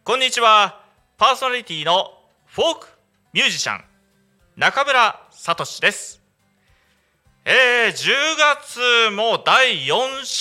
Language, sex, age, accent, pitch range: Japanese, male, 30-49, native, 155-245 Hz